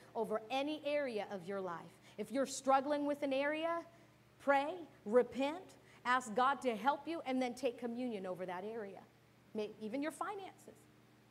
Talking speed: 155 wpm